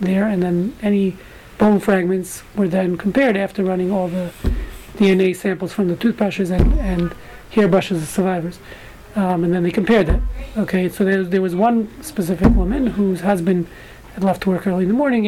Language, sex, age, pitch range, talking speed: English, male, 40-59, 185-215 Hz, 185 wpm